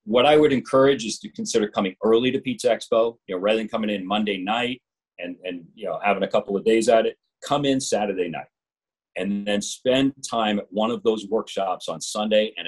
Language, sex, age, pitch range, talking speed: English, male, 40-59, 105-160 Hz, 220 wpm